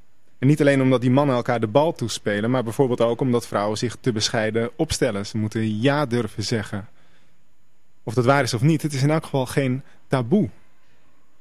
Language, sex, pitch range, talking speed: Dutch, male, 120-150 Hz, 195 wpm